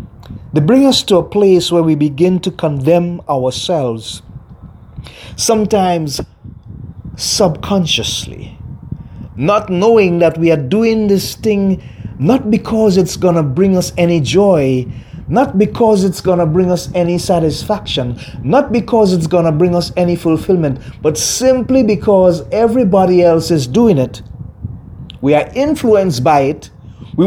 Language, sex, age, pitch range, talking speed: English, male, 30-49, 135-205 Hz, 140 wpm